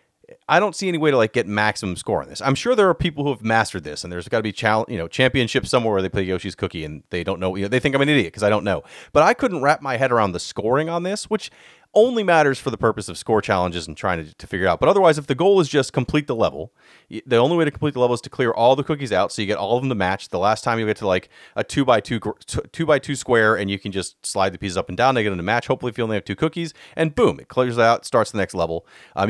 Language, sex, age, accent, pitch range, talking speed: English, male, 30-49, American, 100-145 Hz, 320 wpm